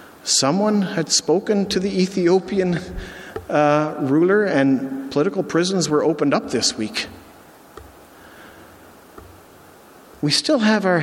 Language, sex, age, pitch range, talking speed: English, male, 50-69, 125-165 Hz, 110 wpm